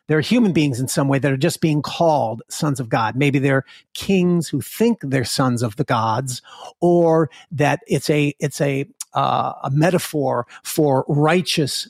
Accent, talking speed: American, 180 wpm